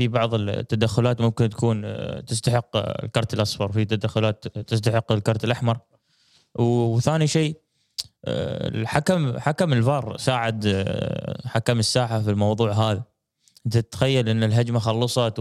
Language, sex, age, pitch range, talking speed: Arabic, male, 20-39, 110-130 Hz, 115 wpm